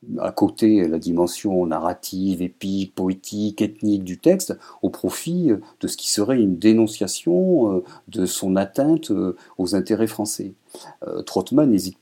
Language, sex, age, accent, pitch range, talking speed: French, male, 50-69, French, 90-120 Hz, 135 wpm